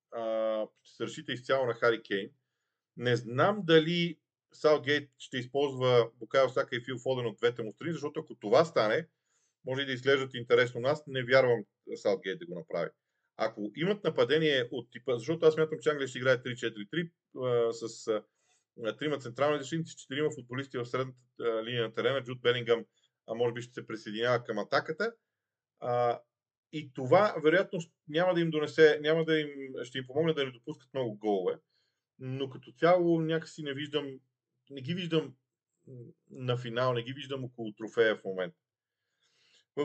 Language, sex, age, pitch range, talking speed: Bulgarian, male, 40-59, 120-160 Hz, 170 wpm